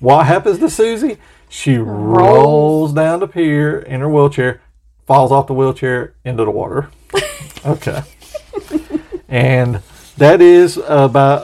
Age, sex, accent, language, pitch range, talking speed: 40-59, male, American, English, 125-155 Hz, 125 wpm